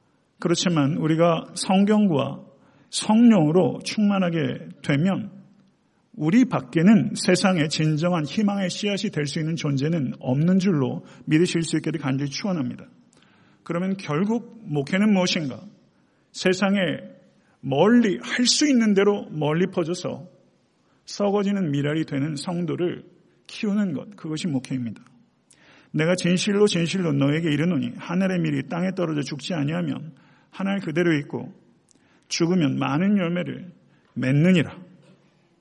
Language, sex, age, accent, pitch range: Korean, male, 50-69, native, 155-205 Hz